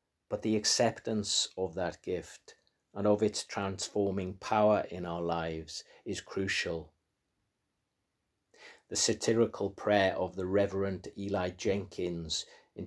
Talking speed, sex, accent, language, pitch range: 115 wpm, male, British, English, 85-100 Hz